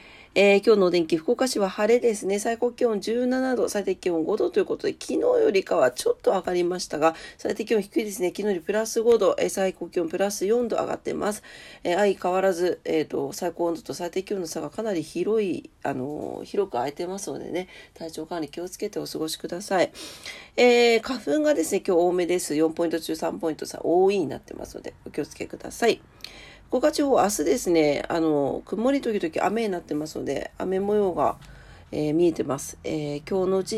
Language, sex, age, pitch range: Japanese, female, 40-59, 165-235 Hz